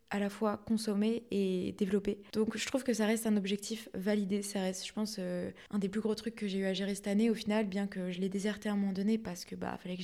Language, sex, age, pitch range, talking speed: French, female, 20-39, 200-230 Hz, 285 wpm